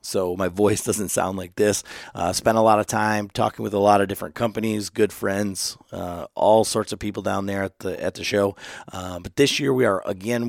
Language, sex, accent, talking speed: English, male, American, 235 wpm